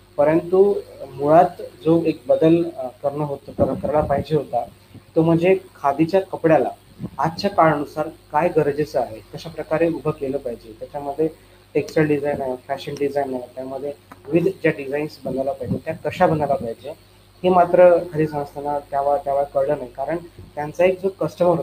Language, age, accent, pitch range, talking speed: Marathi, 30-49, native, 140-170 Hz, 120 wpm